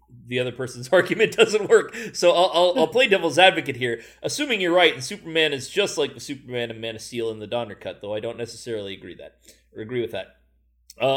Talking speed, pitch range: 230 wpm, 115-155 Hz